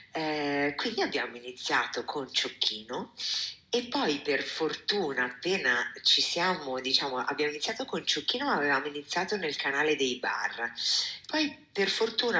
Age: 50-69